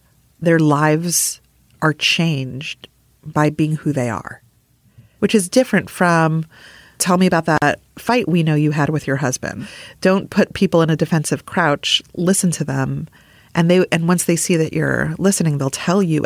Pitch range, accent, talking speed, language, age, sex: 140-165 Hz, American, 175 wpm, English, 40-59, female